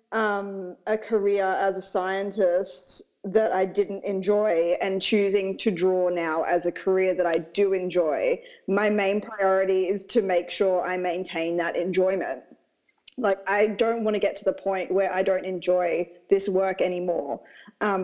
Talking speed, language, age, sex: 165 wpm, English, 20-39, female